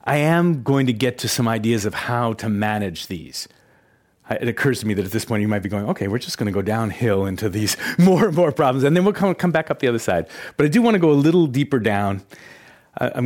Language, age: English, 40-59